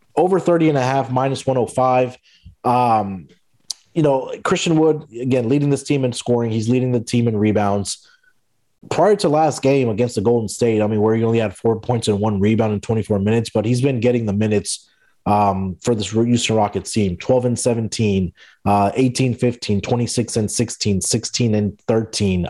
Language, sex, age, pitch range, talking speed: English, male, 30-49, 105-125 Hz, 185 wpm